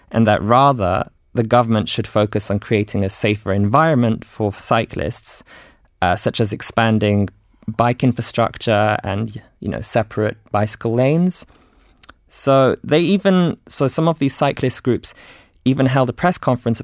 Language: English